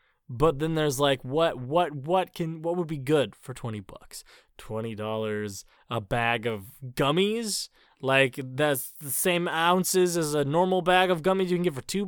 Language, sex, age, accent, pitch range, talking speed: English, male, 20-39, American, 120-185 Hz, 180 wpm